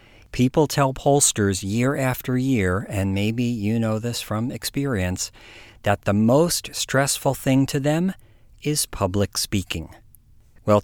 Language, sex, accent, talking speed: English, male, American, 135 wpm